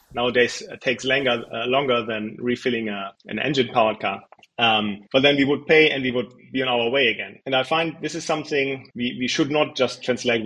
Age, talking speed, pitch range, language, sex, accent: 30-49, 220 wpm, 120-150 Hz, English, male, German